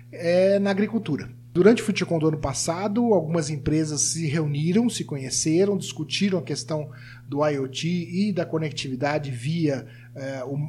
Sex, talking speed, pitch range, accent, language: male, 145 wpm, 145-205 Hz, Brazilian, Portuguese